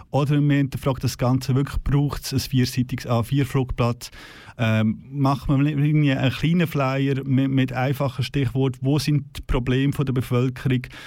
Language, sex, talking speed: German, male, 150 wpm